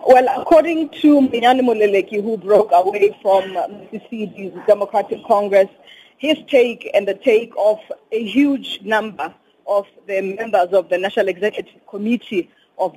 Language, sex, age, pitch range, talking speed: English, female, 20-39, 190-240 Hz, 145 wpm